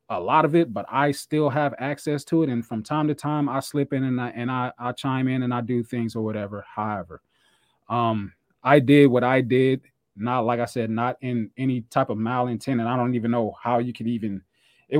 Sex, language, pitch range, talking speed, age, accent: male, English, 120-150 Hz, 235 wpm, 20-39, American